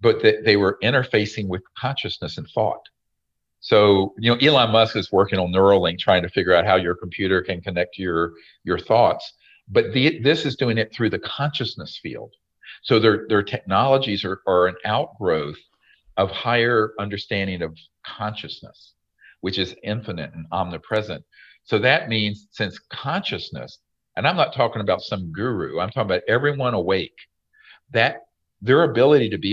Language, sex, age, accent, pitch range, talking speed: English, male, 50-69, American, 95-120 Hz, 165 wpm